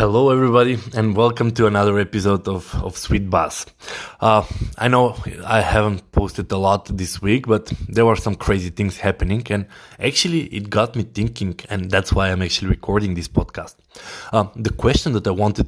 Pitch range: 95-115 Hz